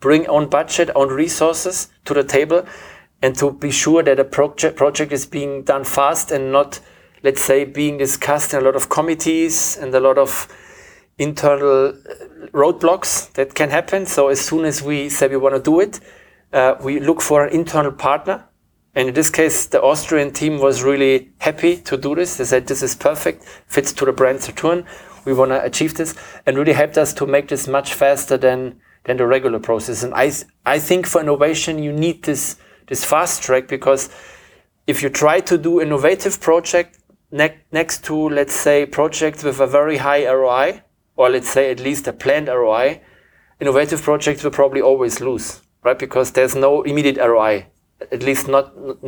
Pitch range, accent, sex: 135-155 Hz, German, male